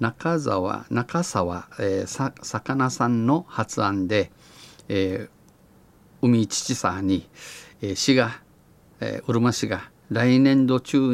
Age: 50-69